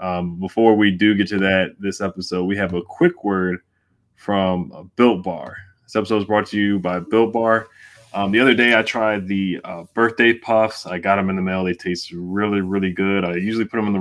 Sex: male